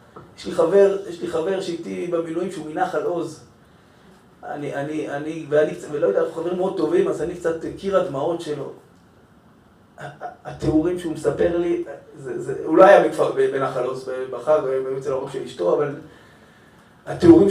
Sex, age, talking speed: male, 30-49, 150 wpm